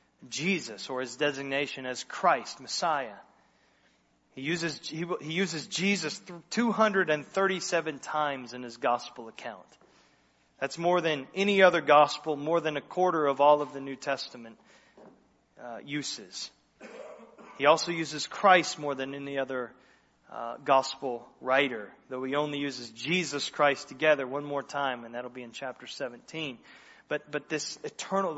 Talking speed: 145 wpm